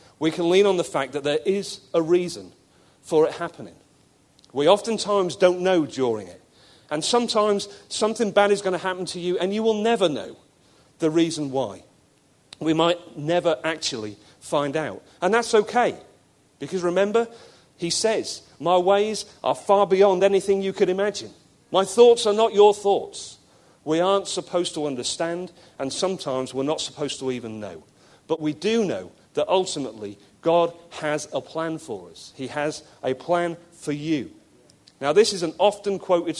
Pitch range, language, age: 155-200 Hz, English, 40-59